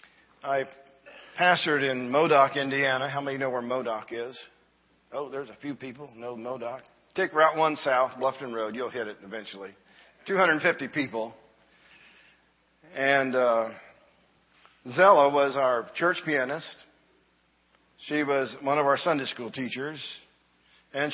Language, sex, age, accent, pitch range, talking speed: English, male, 50-69, American, 110-140 Hz, 130 wpm